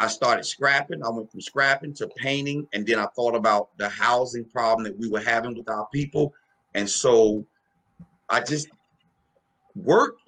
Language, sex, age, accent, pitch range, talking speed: English, male, 40-59, American, 120-160 Hz, 170 wpm